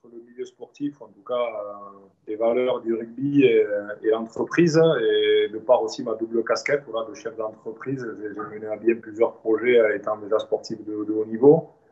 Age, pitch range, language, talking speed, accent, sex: 20-39, 105-145 Hz, French, 195 wpm, French, male